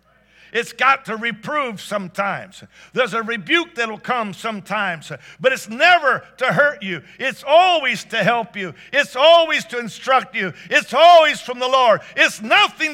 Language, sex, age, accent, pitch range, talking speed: English, male, 50-69, American, 125-200 Hz, 160 wpm